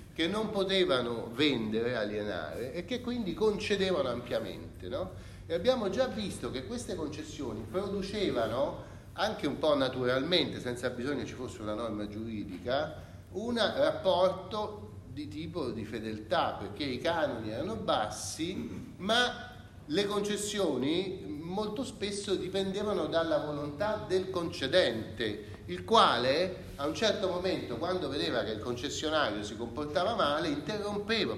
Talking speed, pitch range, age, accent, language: 130 wpm, 120-190 Hz, 30-49, native, Italian